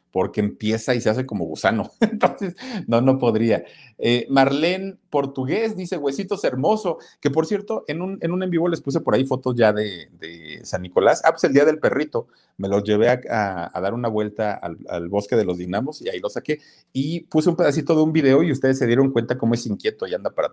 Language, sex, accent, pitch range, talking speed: Spanish, male, Mexican, 115-160 Hz, 230 wpm